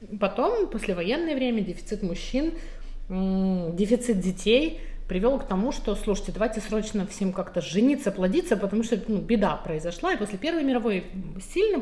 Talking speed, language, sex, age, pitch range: 145 wpm, Russian, female, 30-49, 185-230 Hz